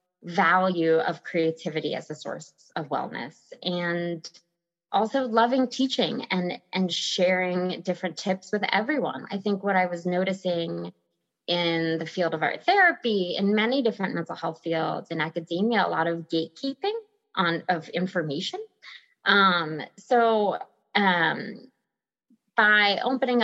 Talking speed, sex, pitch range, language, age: 130 wpm, female, 170-230 Hz, English, 20-39